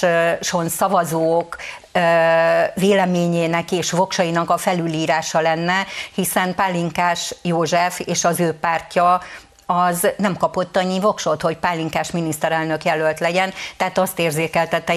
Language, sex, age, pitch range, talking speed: Hungarian, female, 50-69, 165-185 Hz, 110 wpm